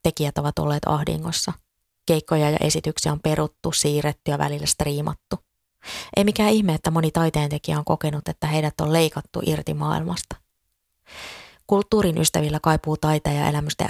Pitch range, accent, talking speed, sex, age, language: 150-165 Hz, native, 145 wpm, female, 20-39, Finnish